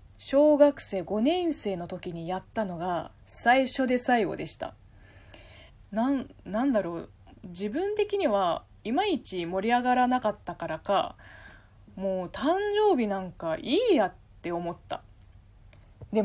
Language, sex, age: Japanese, female, 20-39